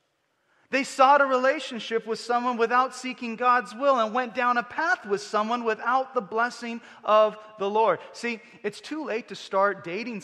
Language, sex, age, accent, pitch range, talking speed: English, male, 30-49, American, 170-235 Hz, 175 wpm